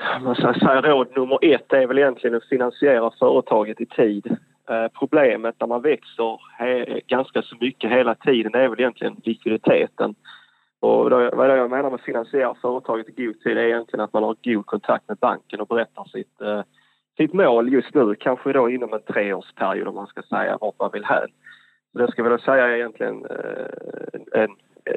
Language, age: Swedish, 30-49